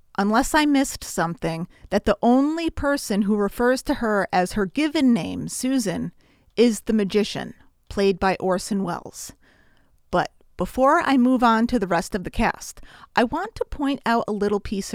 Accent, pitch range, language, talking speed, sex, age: American, 195-260 Hz, English, 175 wpm, female, 30-49